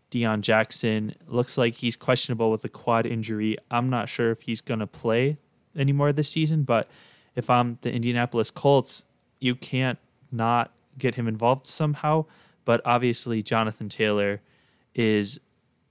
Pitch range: 110-130 Hz